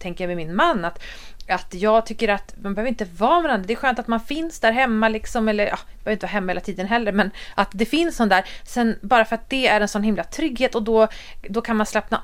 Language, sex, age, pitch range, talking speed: Swedish, female, 30-49, 190-240 Hz, 275 wpm